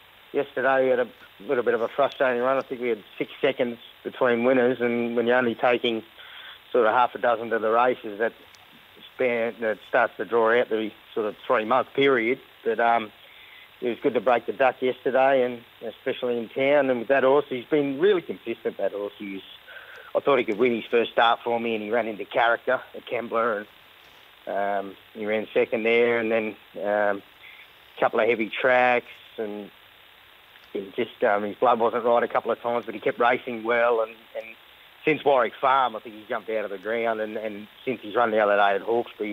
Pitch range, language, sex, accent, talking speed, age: 110-125 Hz, English, male, Australian, 210 wpm, 30-49